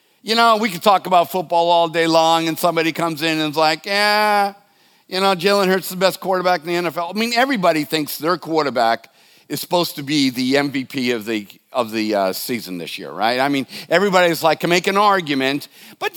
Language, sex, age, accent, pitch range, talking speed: English, male, 50-69, American, 155-210 Hz, 220 wpm